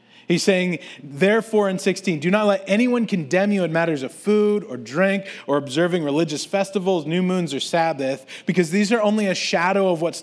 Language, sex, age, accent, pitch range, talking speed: English, male, 30-49, American, 155-200 Hz, 195 wpm